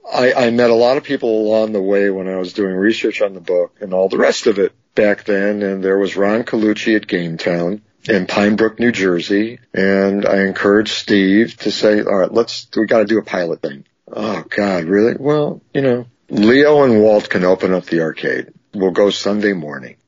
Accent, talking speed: American, 215 wpm